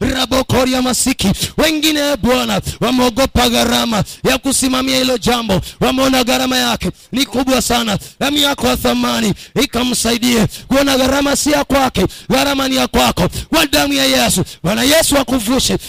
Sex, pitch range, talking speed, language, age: male, 230-270 Hz, 140 wpm, Swahili, 30-49